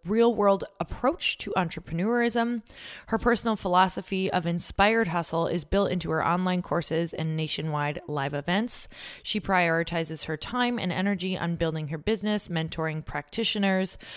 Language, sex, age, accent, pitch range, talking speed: English, female, 20-39, American, 165-230 Hz, 135 wpm